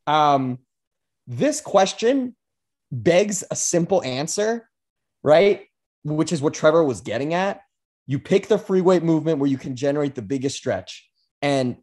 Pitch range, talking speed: 125-175 Hz, 145 wpm